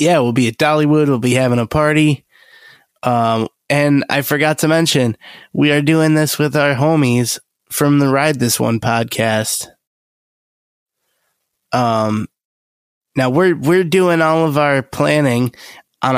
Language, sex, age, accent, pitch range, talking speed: English, male, 20-39, American, 120-155 Hz, 145 wpm